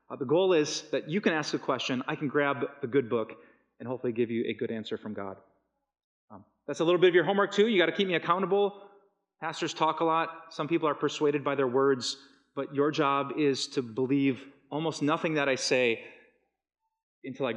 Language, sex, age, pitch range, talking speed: English, male, 30-49, 130-165 Hz, 220 wpm